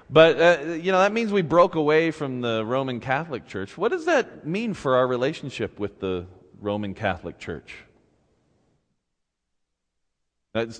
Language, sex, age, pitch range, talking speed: English, male, 40-59, 90-155 Hz, 150 wpm